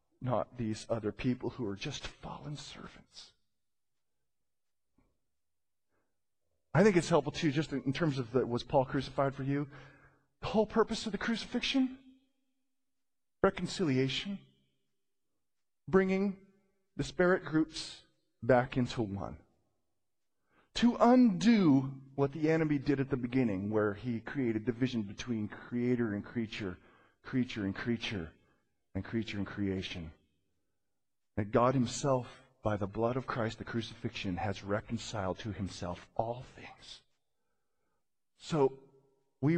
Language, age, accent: English, 40-59, American